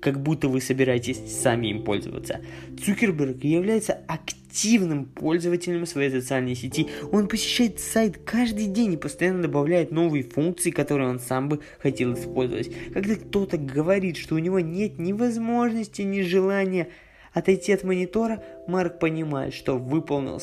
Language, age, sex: Russian, 20-39, male